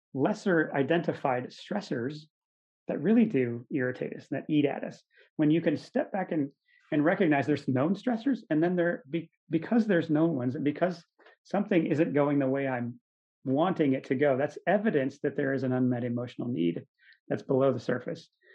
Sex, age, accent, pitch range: male, 30-49, American, 135-195 Hz